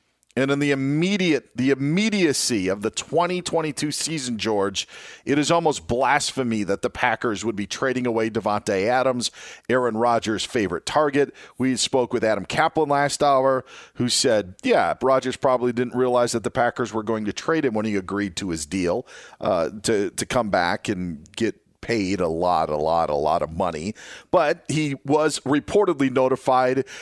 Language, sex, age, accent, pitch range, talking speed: English, male, 40-59, American, 115-150 Hz, 170 wpm